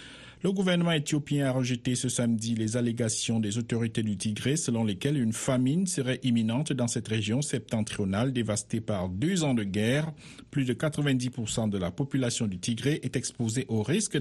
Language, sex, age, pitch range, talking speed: French, male, 50-69, 110-140 Hz, 175 wpm